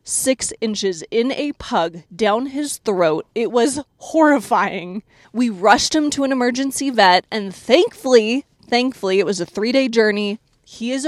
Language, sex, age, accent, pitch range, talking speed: English, female, 20-39, American, 200-270 Hz, 150 wpm